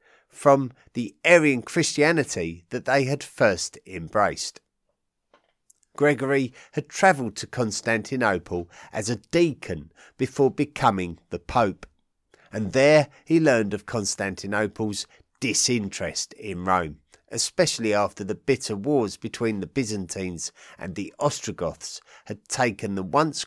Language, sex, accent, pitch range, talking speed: English, male, British, 100-135 Hz, 115 wpm